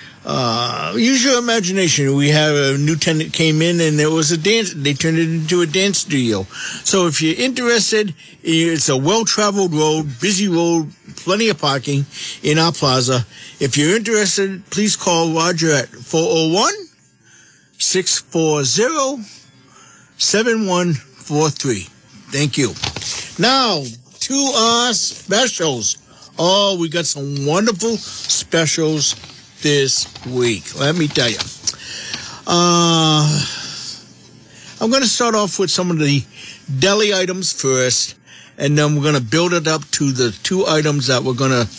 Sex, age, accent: male, 50-69, American